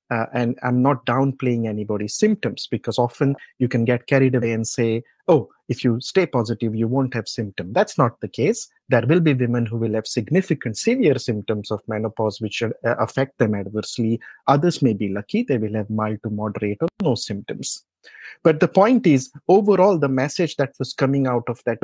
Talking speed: 200 wpm